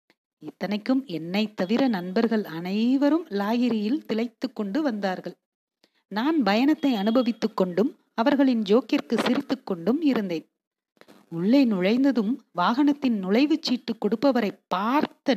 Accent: native